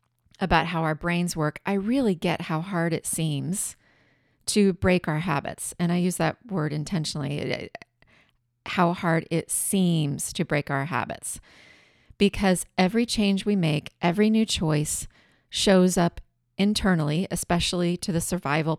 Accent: American